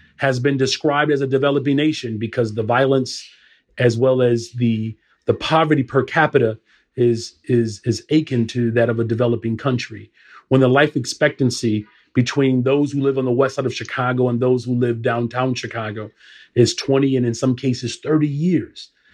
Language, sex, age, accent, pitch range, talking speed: English, male, 40-59, American, 125-160 Hz, 175 wpm